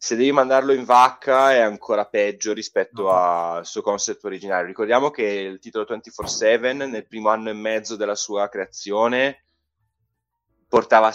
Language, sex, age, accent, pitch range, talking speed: Italian, male, 20-39, native, 95-120 Hz, 150 wpm